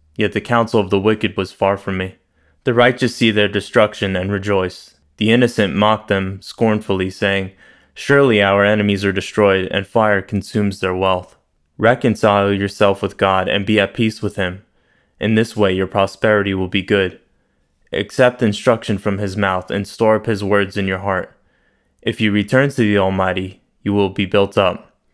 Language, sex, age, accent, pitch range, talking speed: English, male, 20-39, American, 95-105 Hz, 180 wpm